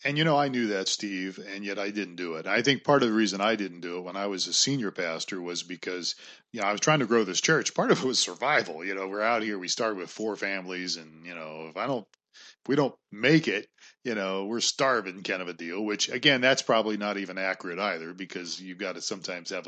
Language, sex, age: English, male, 40-59